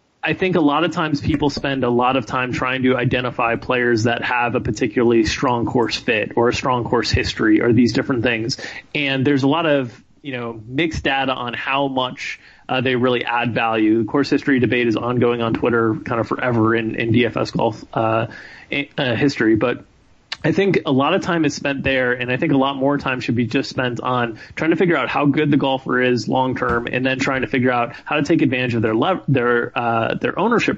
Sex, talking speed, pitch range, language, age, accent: male, 230 wpm, 125-145 Hz, English, 30-49, American